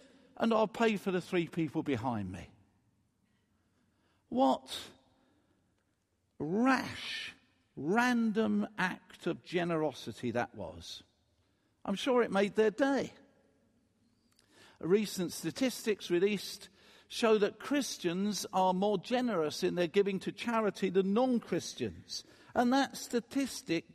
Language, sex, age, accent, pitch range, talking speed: English, male, 50-69, British, 140-225 Hz, 105 wpm